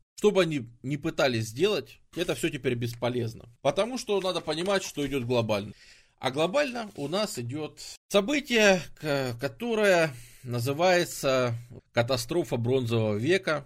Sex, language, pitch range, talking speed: male, English, 120-170 Hz, 120 wpm